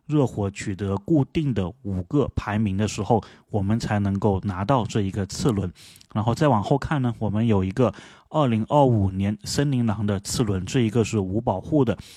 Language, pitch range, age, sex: Chinese, 105-130 Hz, 30-49, male